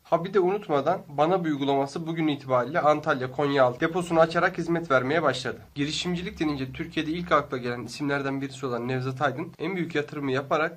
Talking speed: 180 wpm